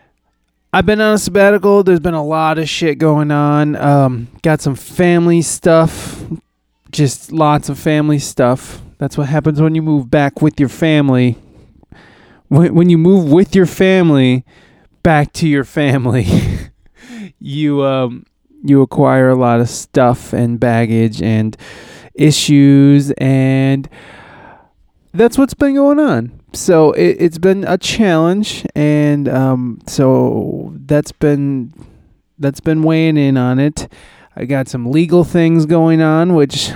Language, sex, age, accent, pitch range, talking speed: English, male, 20-39, American, 125-160 Hz, 140 wpm